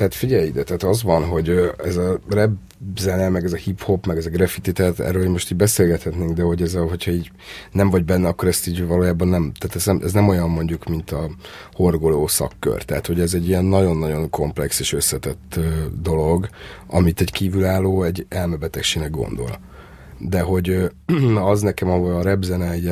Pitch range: 85-95 Hz